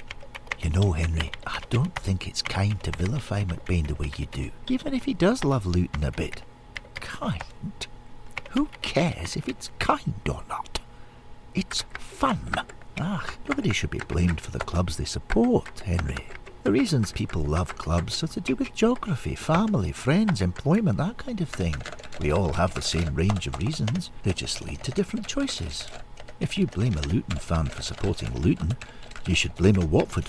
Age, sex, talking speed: 60-79, male, 175 wpm